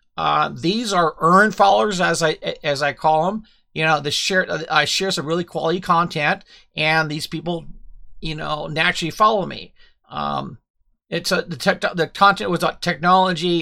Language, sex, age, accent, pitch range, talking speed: English, male, 50-69, American, 160-200 Hz, 175 wpm